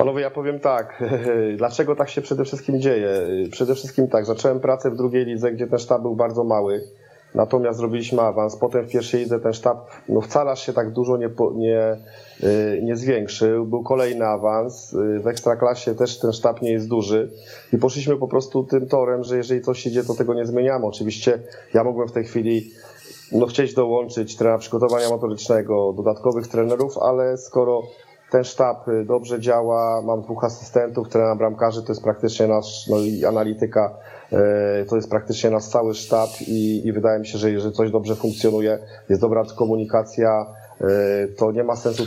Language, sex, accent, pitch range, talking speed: Polish, male, native, 110-125 Hz, 170 wpm